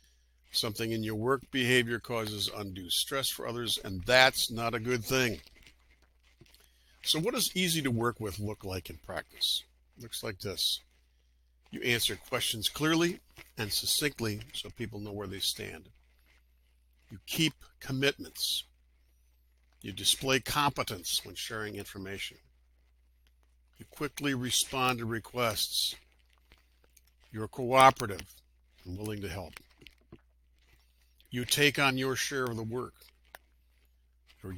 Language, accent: English, American